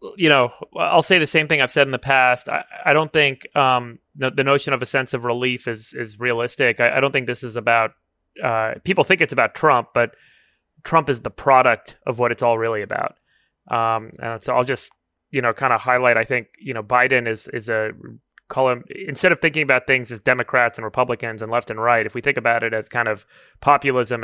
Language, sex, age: English, male, 30-49